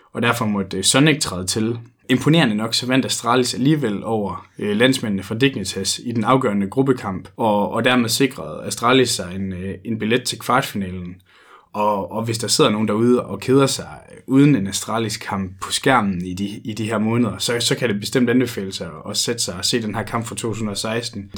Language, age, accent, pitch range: Danish, 20-39, native, 100-120 Hz